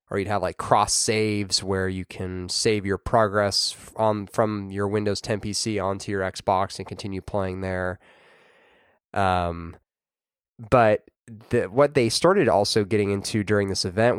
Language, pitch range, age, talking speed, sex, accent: English, 95-115 Hz, 20-39, 155 wpm, male, American